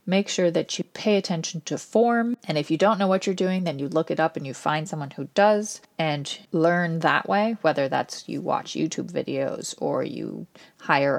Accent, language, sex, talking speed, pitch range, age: American, English, female, 215 wpm, 155-205 Hz, 30-49